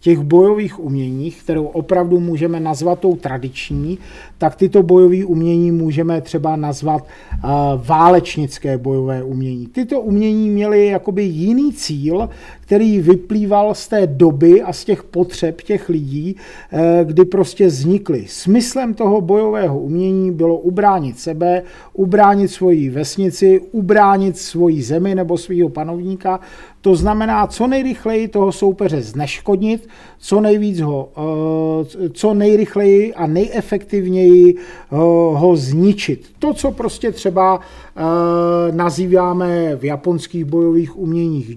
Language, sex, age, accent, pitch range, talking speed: Czech, male, 40-59, native, 160-195 Hz, 115 wpm